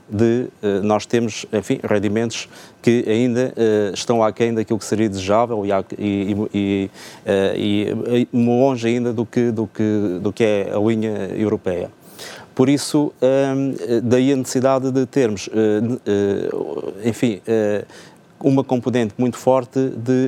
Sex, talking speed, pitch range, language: male, 125 wpm, 110-125 Hz, Portuguese